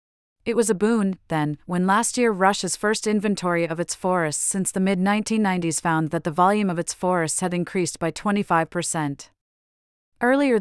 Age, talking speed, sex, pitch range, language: 30-49, 165 wpm, female, 165-205 Hz, English